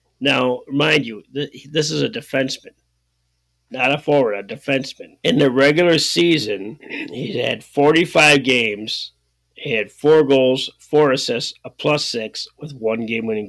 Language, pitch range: English, 115-150 Hz